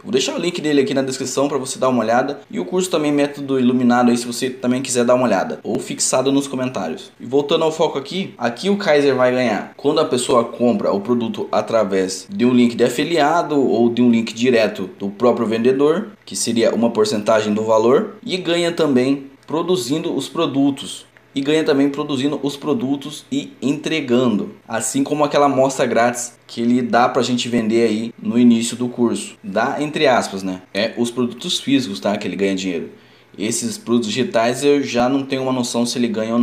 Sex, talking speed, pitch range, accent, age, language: male, 205 wpm, 120-150 Hz, Brazilian, 20-39, Portuguese